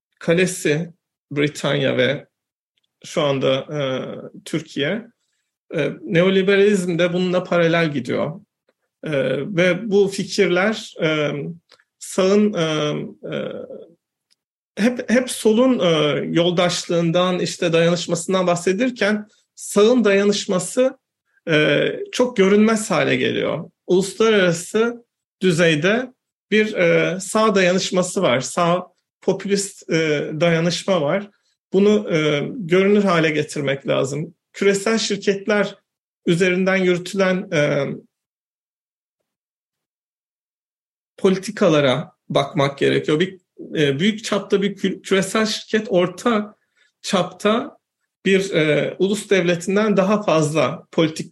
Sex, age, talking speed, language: male, 40-59, 85 wpm, Turkish